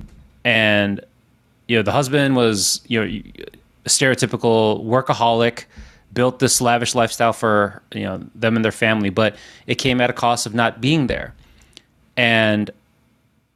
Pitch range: 110-125 Hz